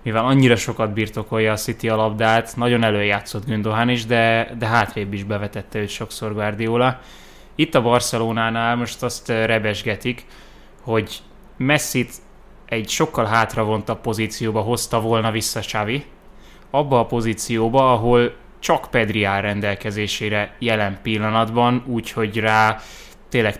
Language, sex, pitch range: Hungarian, male, 110-125 Hz